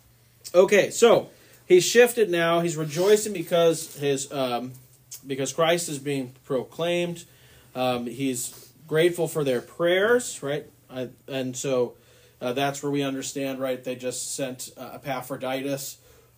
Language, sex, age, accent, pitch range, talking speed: English, male, 30-49, American, 125-160 Hz, 130 wpm